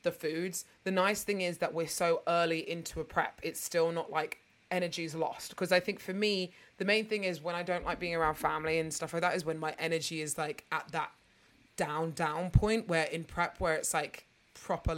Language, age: English, 20-39